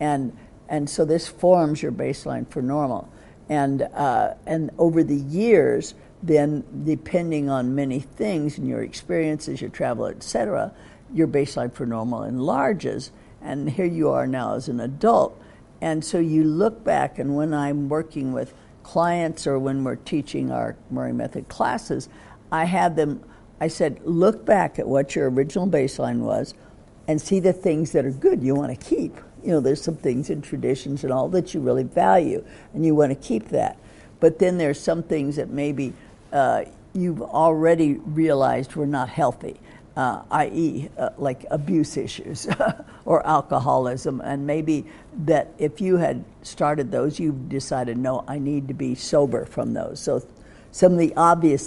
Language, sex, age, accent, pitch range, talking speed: Russian, female, 60-79, American, 135-160 Hz, 170 wpm